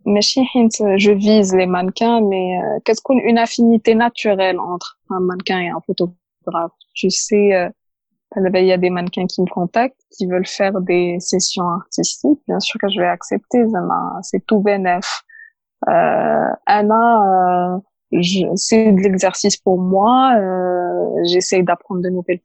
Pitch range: 180-215 Hz